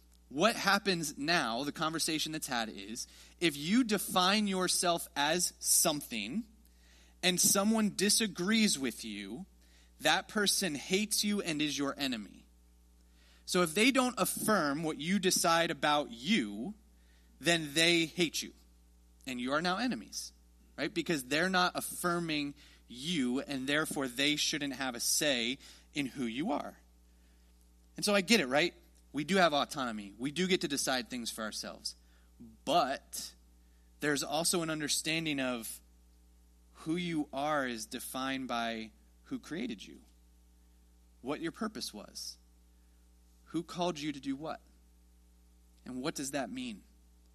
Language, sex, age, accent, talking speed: English, male, 30-49, American, 140 wpm